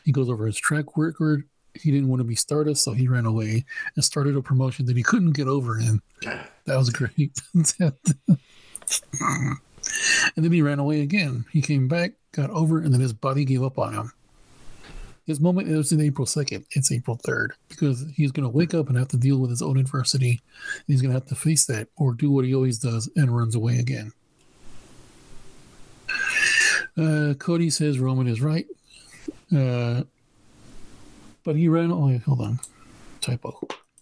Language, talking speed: English, 180 wpm